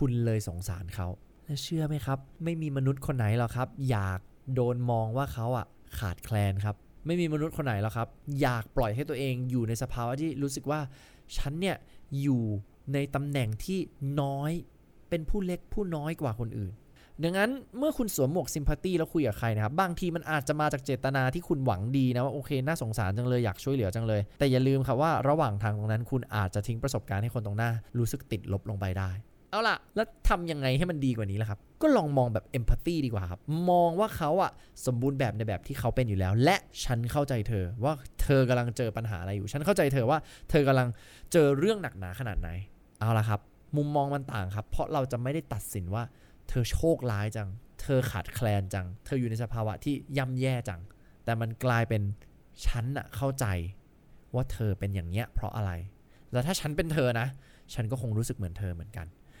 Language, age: English, 20-39